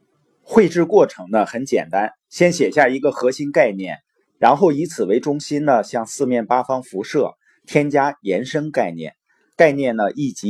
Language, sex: Chinese, male